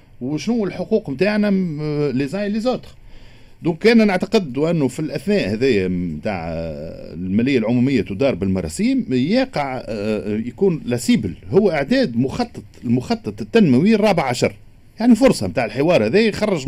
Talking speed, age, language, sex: 120 wpm, 50-69, Arabic, male